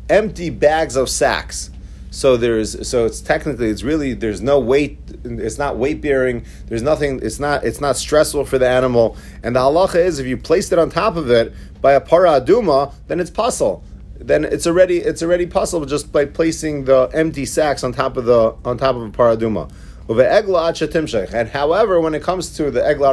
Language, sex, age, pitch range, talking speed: English, male, 30-49, 115-160 Hz, 195 wpm